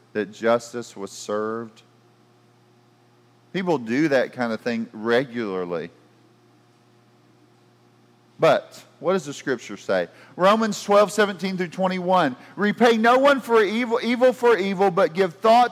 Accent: American